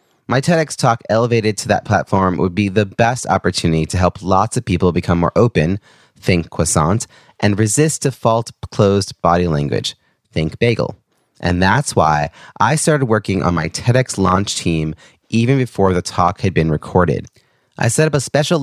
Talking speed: 170 wpm